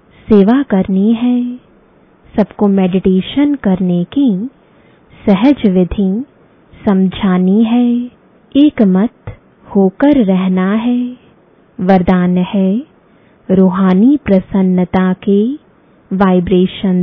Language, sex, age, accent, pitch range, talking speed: English, female, 20-39, Indian, 185-230 Hz, 80 wpm